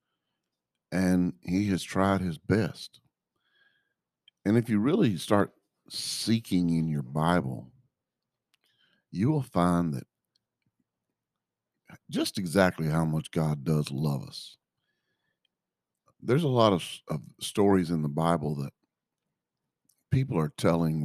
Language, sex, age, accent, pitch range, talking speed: English, male, 50-69, American, 75-95 Hz, 115 wpm